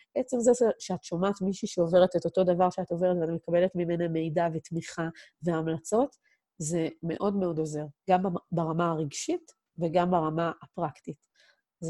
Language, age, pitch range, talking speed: Hebrew, 30-49, 170-200 Hz, 140 wpm